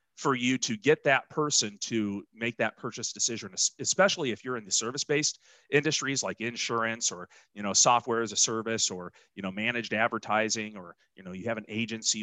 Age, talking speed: 40-59, 190 wpm